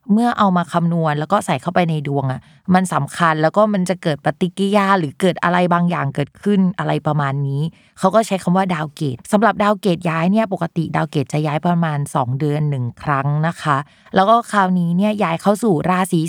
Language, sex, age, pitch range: Thai, female, 20-39, 165-210 Hz